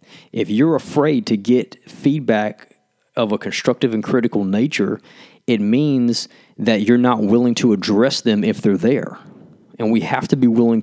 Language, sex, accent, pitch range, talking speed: English, male, American, 105-125 Hz, 165 wpm